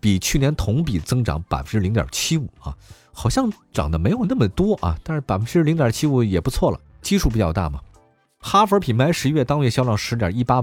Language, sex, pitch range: Chinese, male, 85-125 Hz